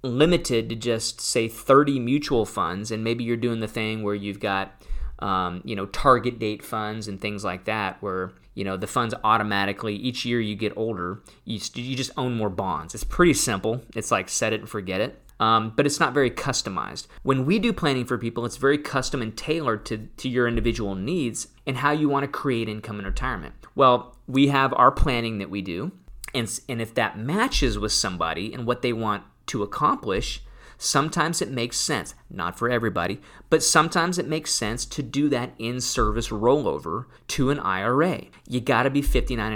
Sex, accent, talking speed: male, American, 195 wpm